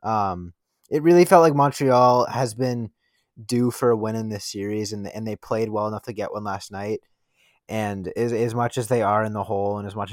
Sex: male